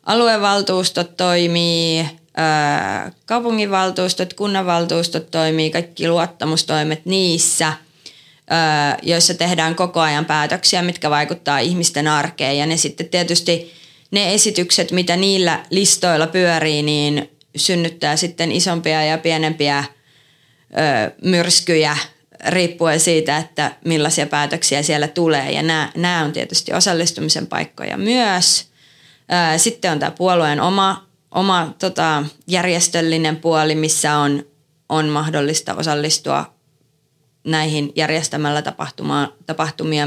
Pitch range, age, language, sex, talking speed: 150-175 Hz, 30-49, Finnish, female, 100 wpm